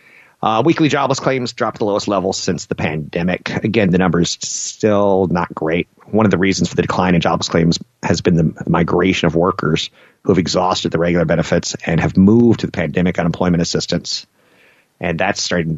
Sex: male